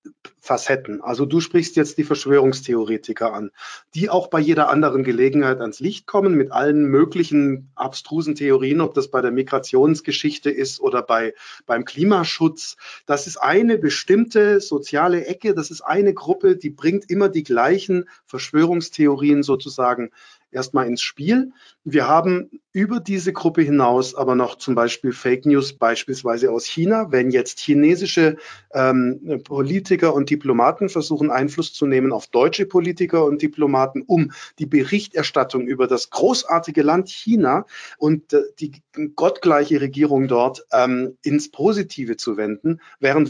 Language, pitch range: German, 130-180 Hz